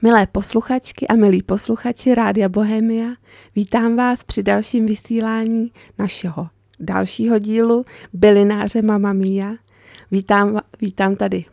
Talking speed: 105 wpm